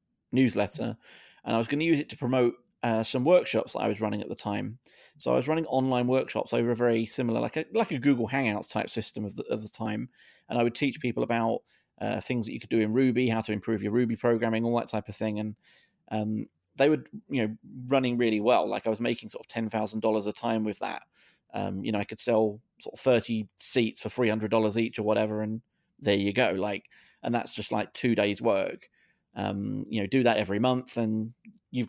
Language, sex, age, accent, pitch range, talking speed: English, male, 30-49, British, 110-125 Hz, 235 wpm